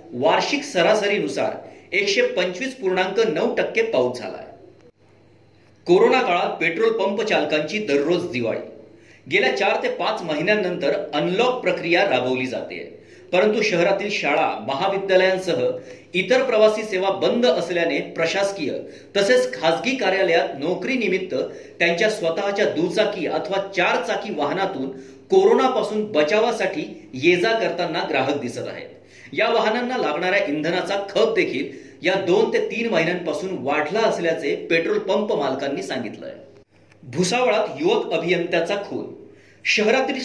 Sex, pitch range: male, 170-240 Hz